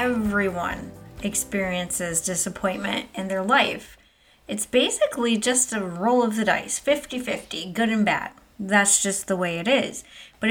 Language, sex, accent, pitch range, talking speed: English, female, American, 195-250 Hz, 145 wpm